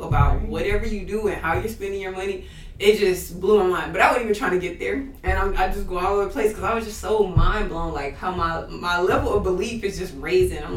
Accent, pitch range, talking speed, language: American, 180-230 Hz, 280 wpm, English